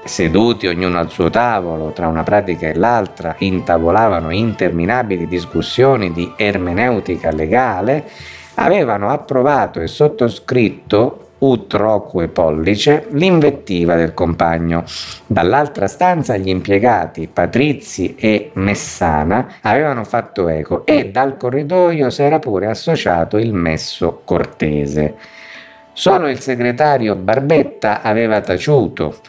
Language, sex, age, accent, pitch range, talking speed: Italian, male, 50-69, native, 85-125 Hz, 105 wpm